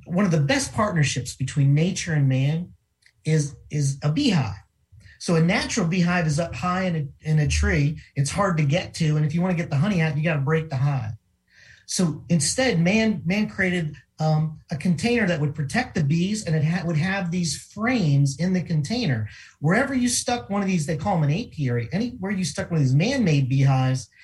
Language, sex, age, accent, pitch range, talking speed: English, male, 40-59, American, 140-190 Hz, 215 wpm